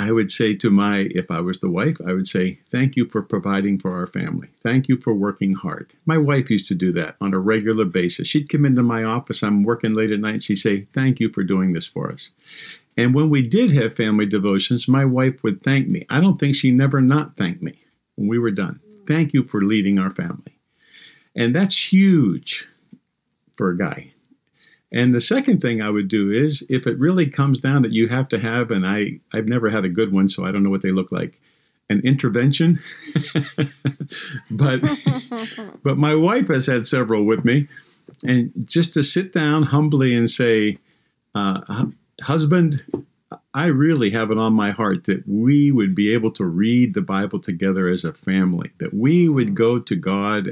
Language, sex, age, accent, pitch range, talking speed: English, male, 50-69, American, 105-145 Hz, 205 wpm